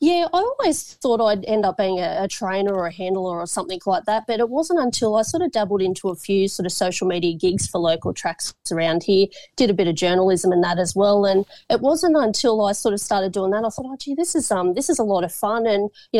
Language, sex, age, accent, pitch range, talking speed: English, female, 30-49, Australian, 180-215 Hz, 270 wpm